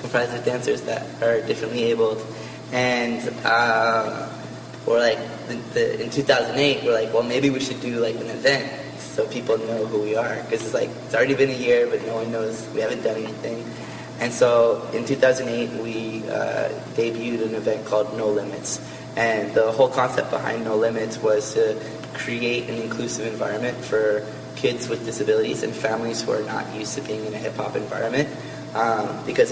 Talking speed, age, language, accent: 180 wpm, 20-39, French, American